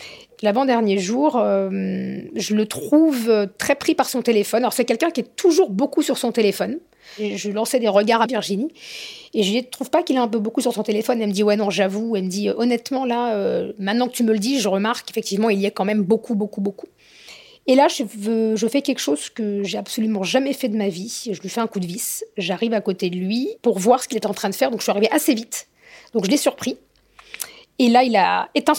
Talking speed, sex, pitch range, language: 260 wpm, female, 205-255 Hz, French